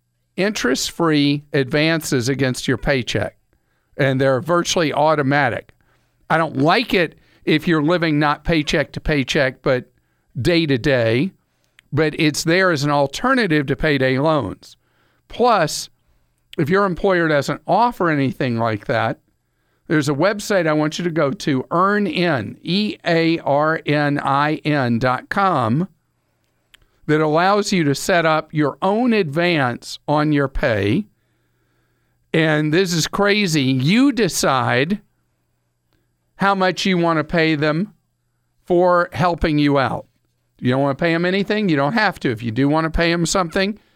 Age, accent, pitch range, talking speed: 50-69, American, 140-180 Hz, 140 wpm